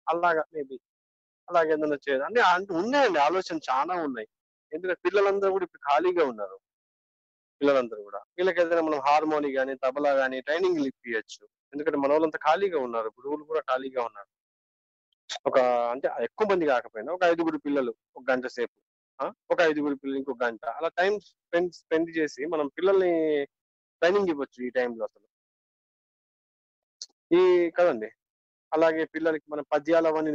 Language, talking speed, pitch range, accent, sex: Telugu, 140 wpm, 130-180 Hz, native, male